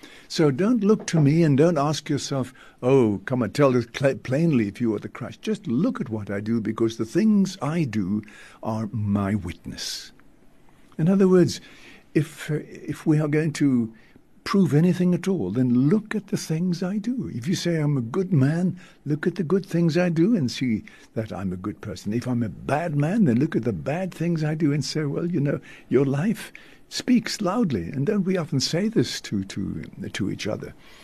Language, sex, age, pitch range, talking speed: English, male, 60-79, 115-170 Hz, 210 wpm